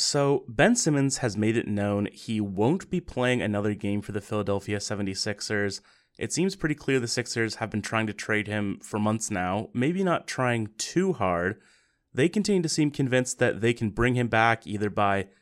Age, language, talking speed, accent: 30-49, English, 195 wpm, American